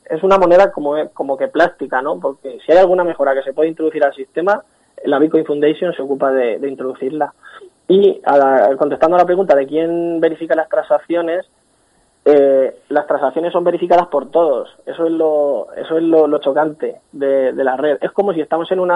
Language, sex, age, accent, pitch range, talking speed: Spanish, male, 20-39, Spanish, 145-175 Hz, 205 wpm